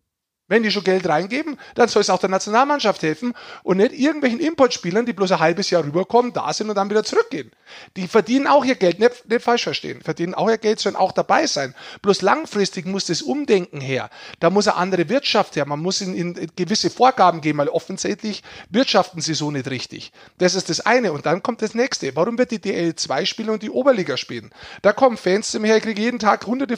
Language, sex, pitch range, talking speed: German, male, 175-235 Hz, 215 wpm